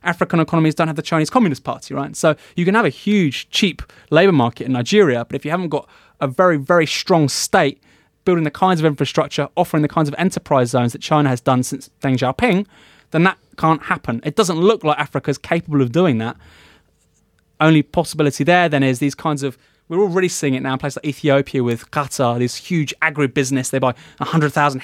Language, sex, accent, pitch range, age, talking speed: English, male, British, 125-160 Hz, 20-39, 210 wpm